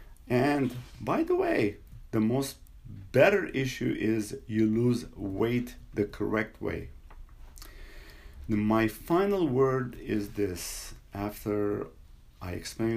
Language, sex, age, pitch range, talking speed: English, male, 50-69, 105-150 Hz, 105 wpm